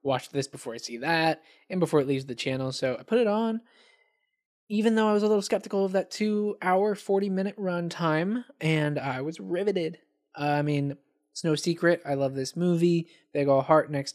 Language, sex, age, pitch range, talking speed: English, male, 20-39, 130-170 Hz, 210 wpm